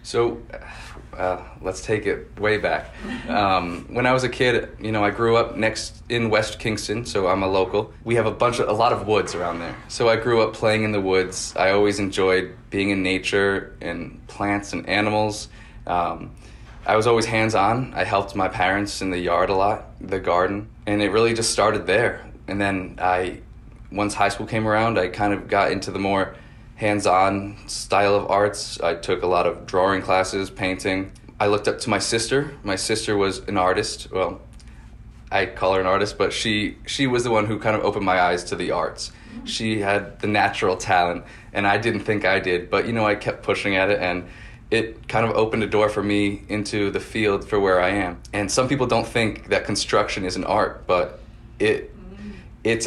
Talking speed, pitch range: 210 wpm, 95-110 Hz